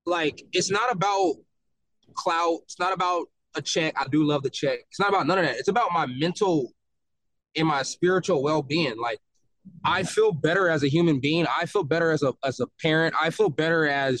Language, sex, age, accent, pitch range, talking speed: English, male, 20-39, American, 155-195 Hz, 205 wpm